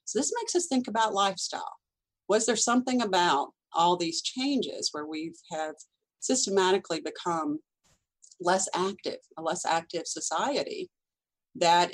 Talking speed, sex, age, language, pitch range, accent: 130 wpm, female, 40-59, English, 175-290 Hz, American